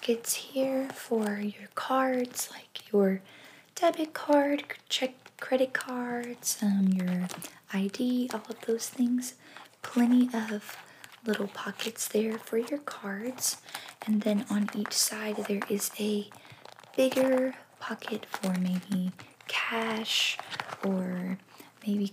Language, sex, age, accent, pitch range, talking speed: English, female, 20-39, American, 205-250 Hz, 110 wpm